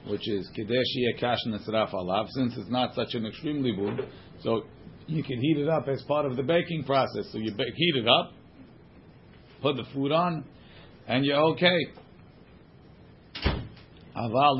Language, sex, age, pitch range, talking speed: English, male, 50-69, 110-135 Hz, 160 wpm